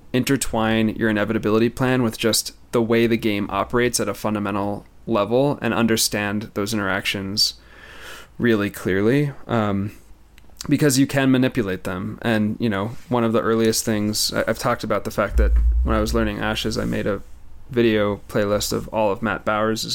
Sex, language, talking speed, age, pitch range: male, English, 170 wpm, 20-39, 100-120 Hz